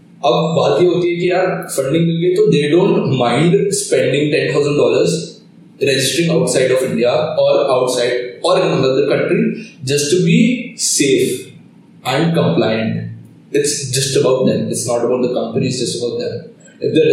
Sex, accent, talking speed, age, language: male, native, 45 wpm, 20-39, Hindi